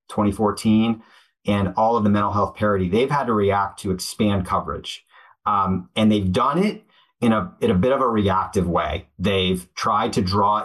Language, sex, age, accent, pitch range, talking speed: English, male, 30-49, American, 95-110 Hz, 180 wpm